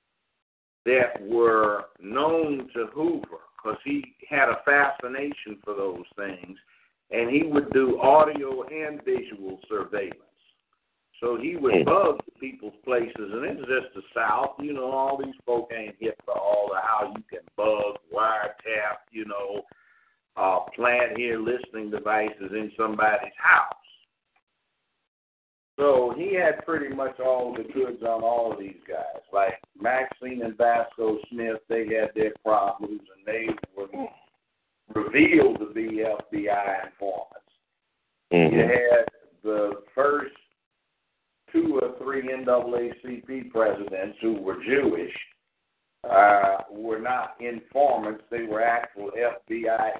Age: 60-79